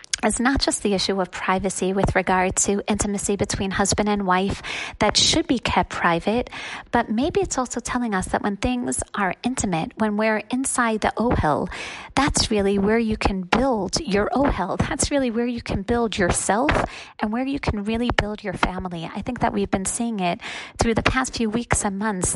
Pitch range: 195-245 Hz